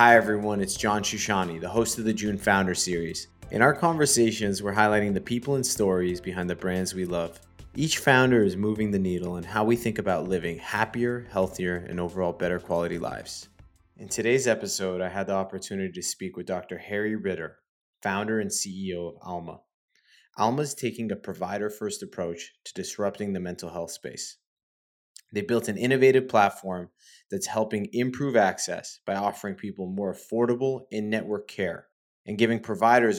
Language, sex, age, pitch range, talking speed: English, male, 20-39, 95-115 Hz, 170 wpm